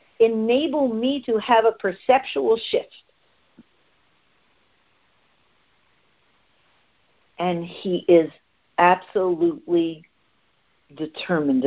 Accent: American